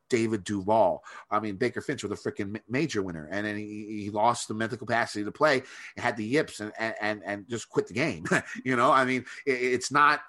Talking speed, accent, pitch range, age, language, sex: 225 wpm, American, 110-140 Hz, 30-49, English, male